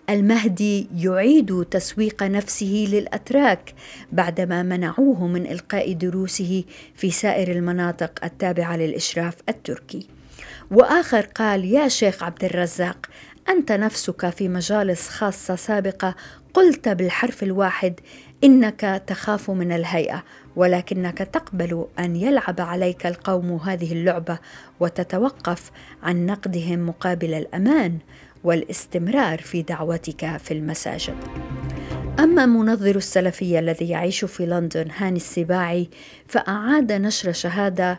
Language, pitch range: Arabic, 175-210 Hz